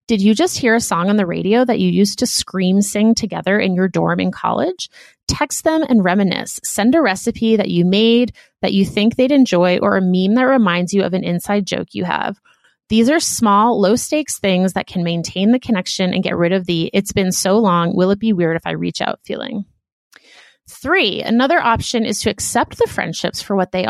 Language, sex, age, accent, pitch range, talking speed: English, female, 30-49, American, 185-240 Hz, 220 wpm